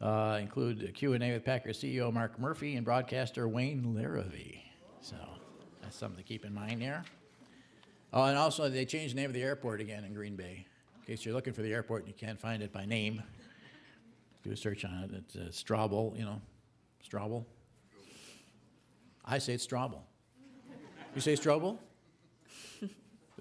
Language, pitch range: English, 105-130 Hz